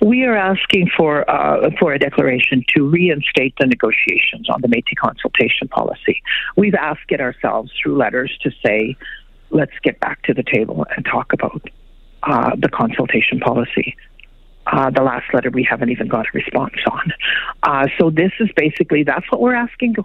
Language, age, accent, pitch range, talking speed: English, 60-79, American, 135-185 Hz, 175 wpm